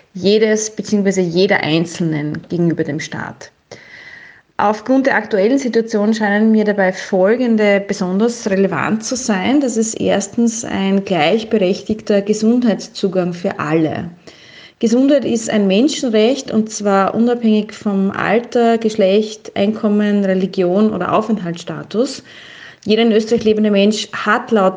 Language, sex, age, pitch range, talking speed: German, female, 30-49, 185-215 Hz, 115 wpm